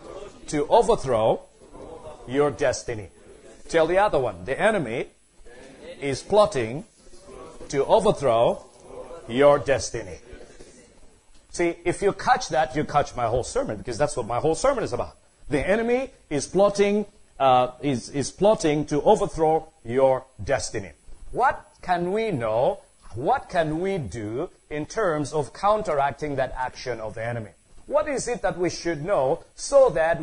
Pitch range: 140-205 Hz